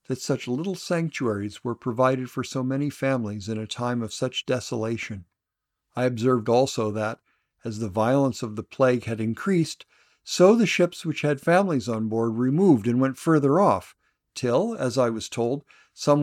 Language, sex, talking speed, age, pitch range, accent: English, male, 175 wpm, 50-69, 105-135 Hz, American